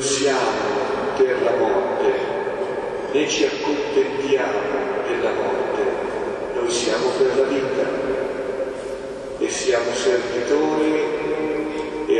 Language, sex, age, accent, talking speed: Italian, male, 40-59, native, 90 wpm